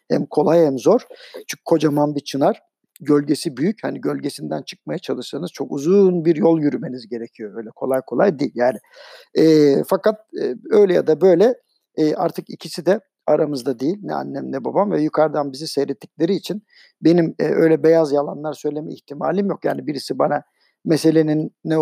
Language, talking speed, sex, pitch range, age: Turkish, 165 wpm, male, 150-190 Hz, 50-69